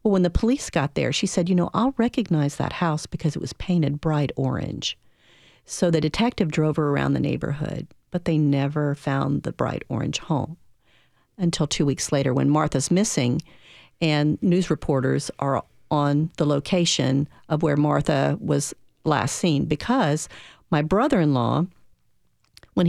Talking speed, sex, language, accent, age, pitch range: 155 wpm, female, English, American, 50-69, 150-180 Hz